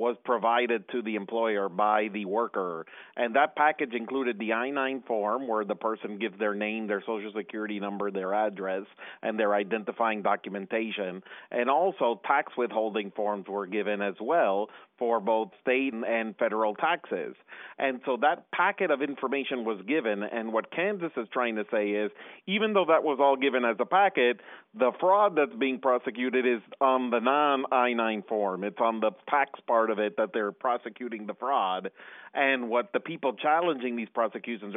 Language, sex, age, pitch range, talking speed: English, male, 40-59, 105-125 Hz, 175 wpm